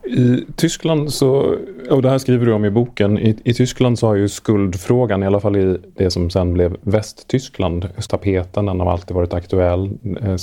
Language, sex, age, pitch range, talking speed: Swedish, male, 30-49, 95-115 Hz, 180 wpm